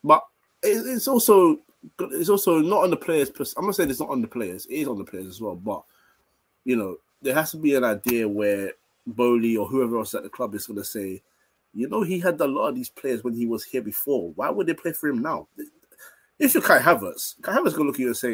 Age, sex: 20-39, male